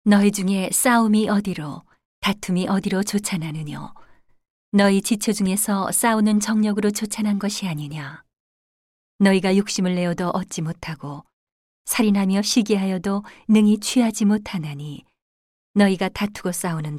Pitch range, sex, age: 170-205 Hz, female, 40-59